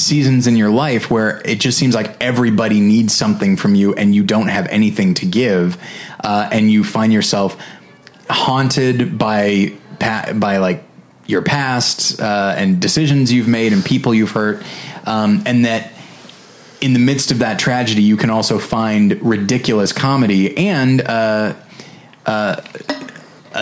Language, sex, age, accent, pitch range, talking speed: English, male, 20-39, American, 105-140 Hz, 150 wpm